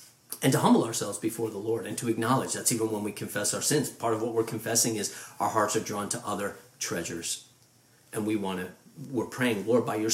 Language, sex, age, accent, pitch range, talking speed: English, male, 40-59, American, 120-165 Hz, 230 wpm